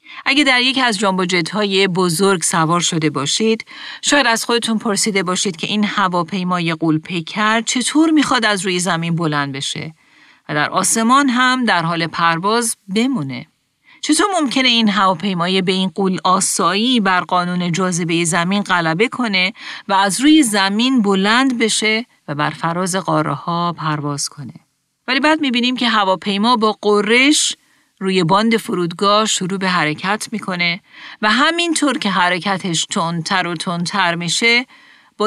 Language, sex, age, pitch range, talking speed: Persian, female, 40-59, 175-235 Hz, 145 wpm